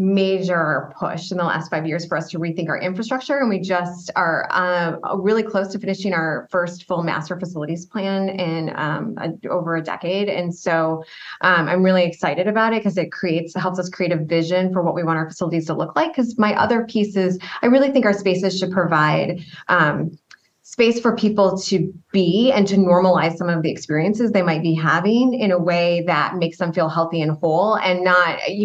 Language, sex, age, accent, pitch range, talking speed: English, female, 20-39, American, 175-215 Hz, 205 wpm